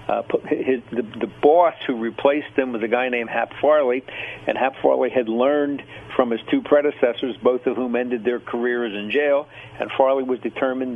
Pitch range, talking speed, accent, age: 120-140 Hz, 190 wpm, American, 60-79